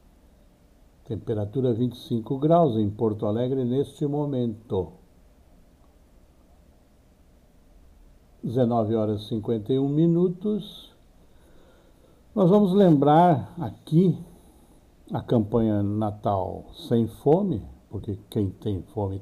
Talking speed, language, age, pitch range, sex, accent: 80 wpm, Portuguese, 60-79, 90-145 Hz, male, Brazilian